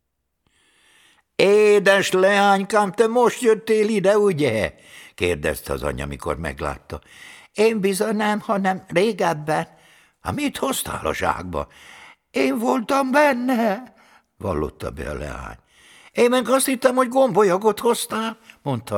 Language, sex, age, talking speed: Hungarian, male, 60-79, 120 wpm